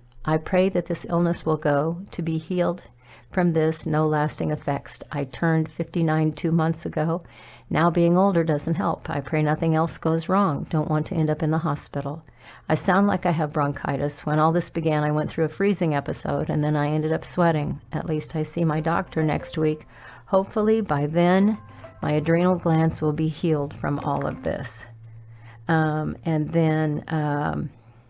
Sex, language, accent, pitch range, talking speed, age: female, English, American, 150-170 Hz, 185 wpm, 50-69